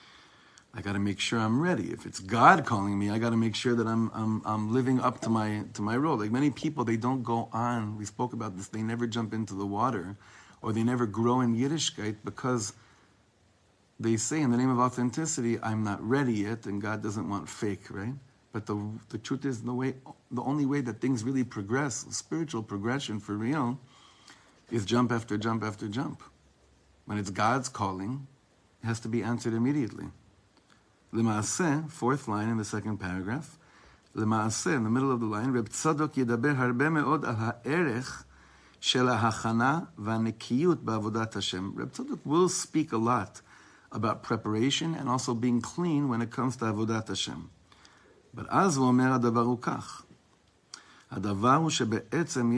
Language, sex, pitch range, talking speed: English, male, 105-125 Hz, 155 wpm